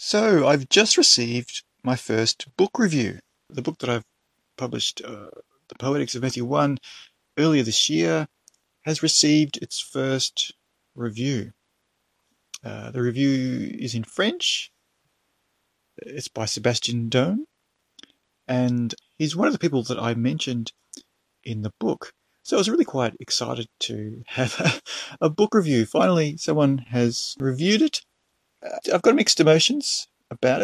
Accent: Australian